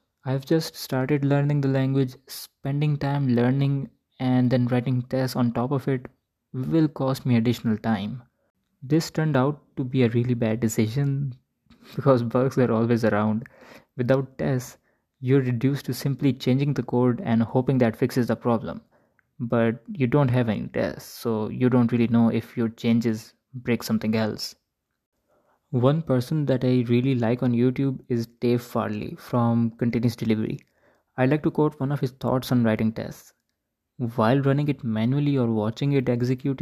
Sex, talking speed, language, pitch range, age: male, 165 wpm, Urdu, 115-135 Hz, 20-39